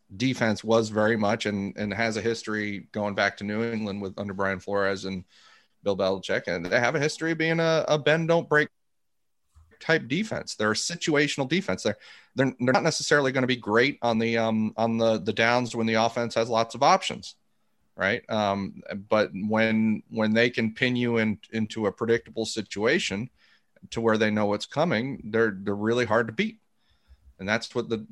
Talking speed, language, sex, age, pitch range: 195 wpm, English, male, 30-49, 100-120 Hz